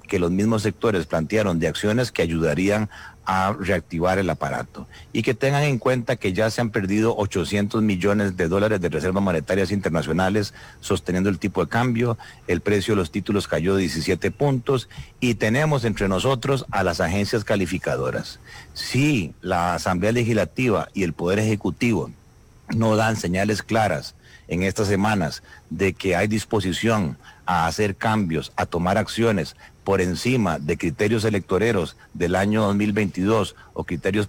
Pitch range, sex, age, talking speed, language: 90-115 Hz, male, 40-59, 150 wpm, Spanish